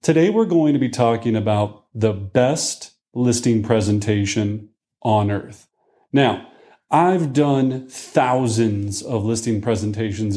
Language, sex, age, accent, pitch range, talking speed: English, male, 40-59, American, 115-150 Hz, 115 wpm